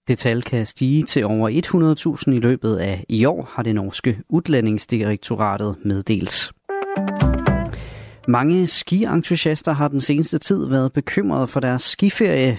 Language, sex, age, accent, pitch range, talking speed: Danish, male, 30-49, native, 110-140 Hz, 135 wpm